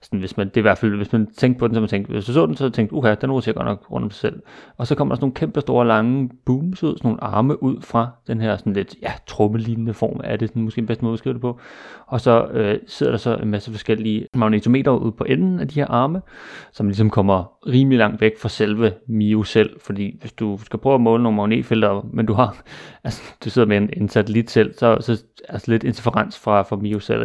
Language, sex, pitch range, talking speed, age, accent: Danish, male, 105-120 Hz, 260 wpm, 30-49, native